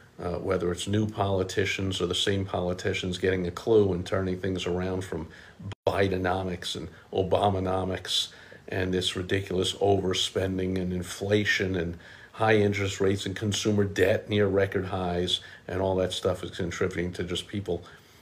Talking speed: 150 wpm